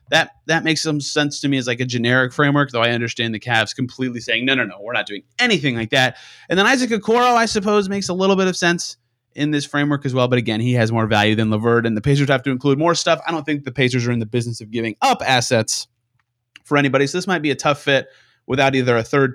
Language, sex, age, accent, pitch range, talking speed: English, male, 30-49, American, 120-160 Hz, 270 wpm